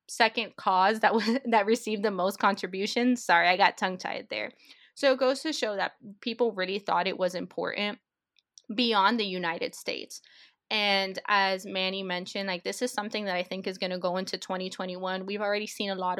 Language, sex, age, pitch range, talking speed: English, female, 20-39, 180-210 Hz, 195 wpm